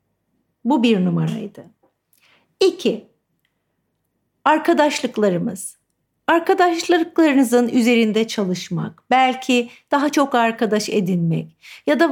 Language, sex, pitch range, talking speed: Turkish, female, 195-275 Hz, 75 wpm